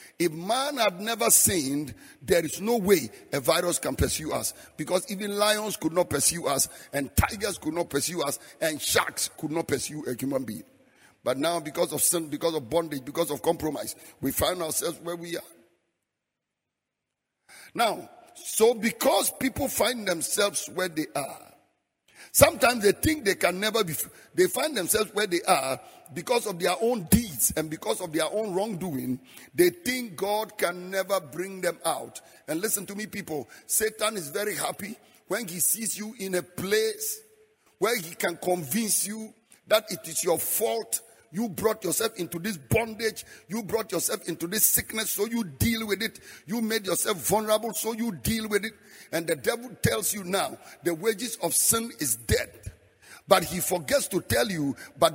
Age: 50-69